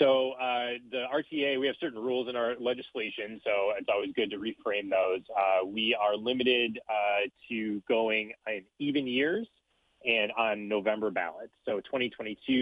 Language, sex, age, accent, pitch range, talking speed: English, male, 30-49, American, 105-130 Hz, 160 wpm